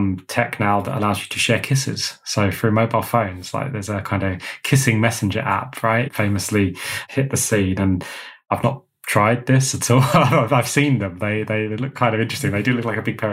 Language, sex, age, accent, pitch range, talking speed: English, male, 20-39, British, 100-120 Hz, 220 wpm